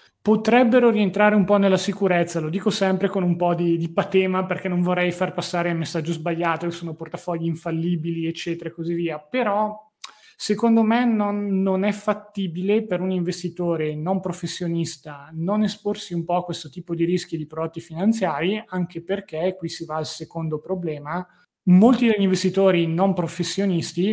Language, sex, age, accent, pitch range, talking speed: Italian, male, 30-49, native, 160-190 Hz, 170 wpm